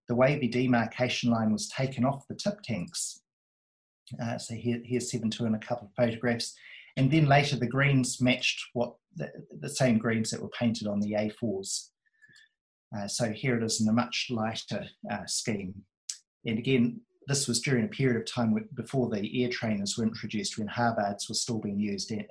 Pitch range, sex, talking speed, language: 110-130 Hz, male, 190 wpm, English